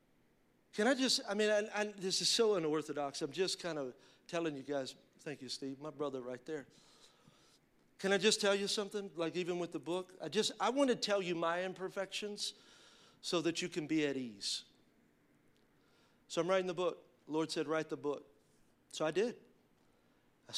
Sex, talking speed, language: male, 195 wpm, English